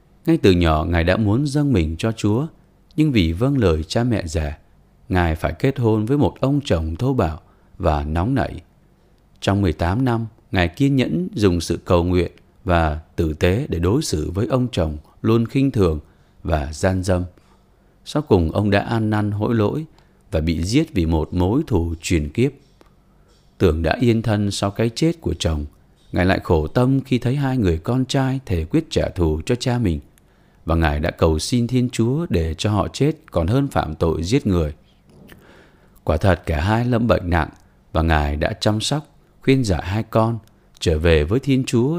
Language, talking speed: Vietnamese, 195 wpm